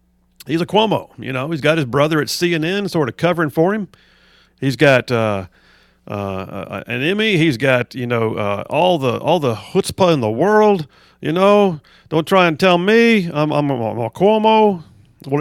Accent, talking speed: American, 190 wpm